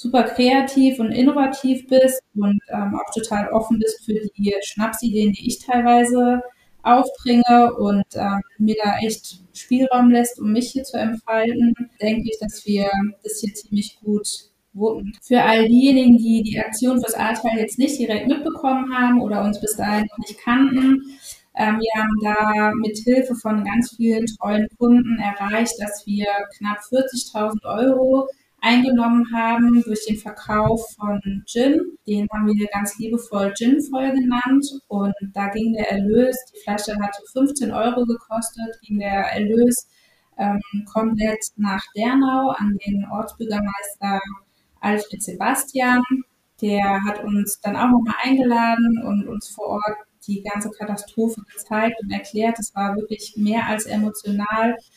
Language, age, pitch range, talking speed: German, 20-39, 210-245 Hz, 150 wpm